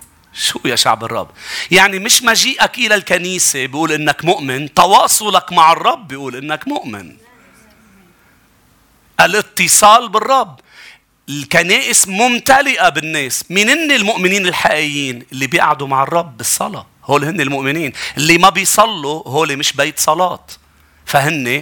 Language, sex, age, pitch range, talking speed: English, male, 40-59, 130-180 Hz, 120 wpm